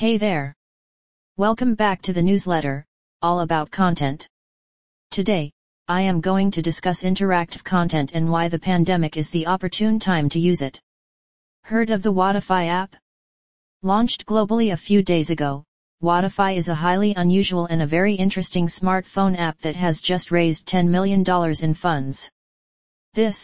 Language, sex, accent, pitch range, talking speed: English, female, American, 165-190 Hz, 155 wpm